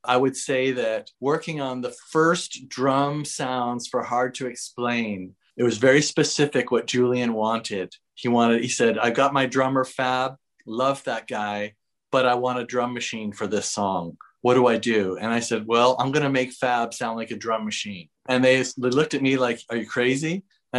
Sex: male